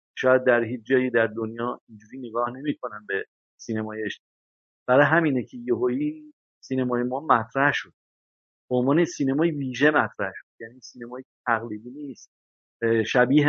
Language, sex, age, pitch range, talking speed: Persian, male, 50-69, 115-145 Hz, 130 wpm